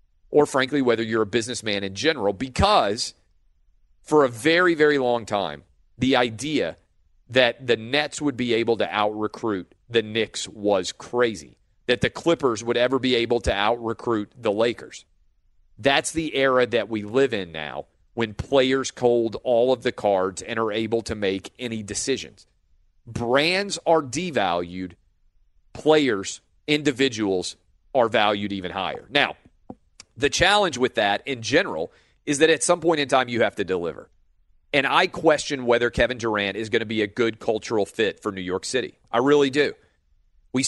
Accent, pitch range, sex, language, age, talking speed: American, 100-135 Hz, male, English, 40-59, 165 wpm